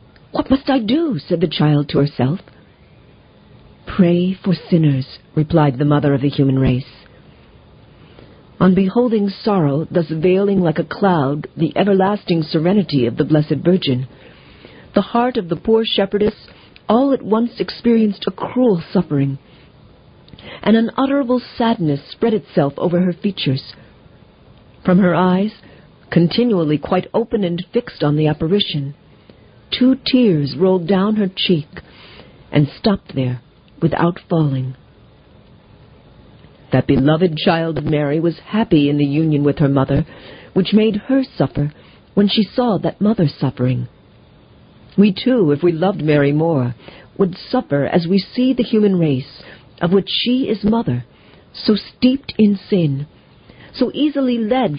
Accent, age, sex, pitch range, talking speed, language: American, 50-69, female, 145-210 Hz, 140 wpm, English